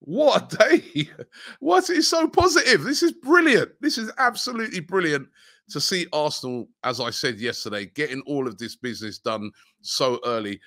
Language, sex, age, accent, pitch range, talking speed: English, male, 30-49, British, 115-155 Hz, 165 wpm